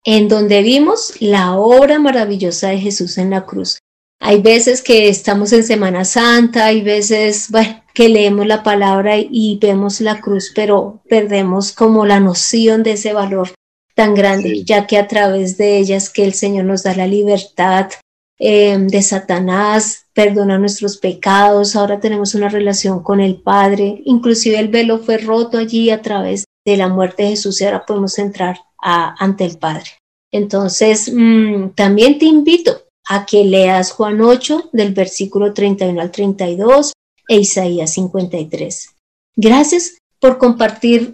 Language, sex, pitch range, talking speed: Spanish, female, 195-230 Hz, 155 wpm